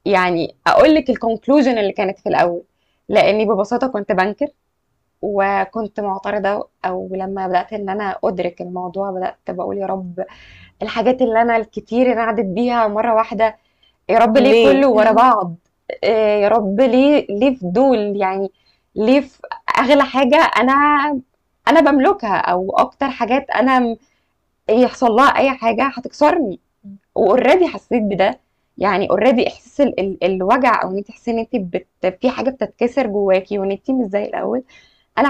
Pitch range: 200-270 Hz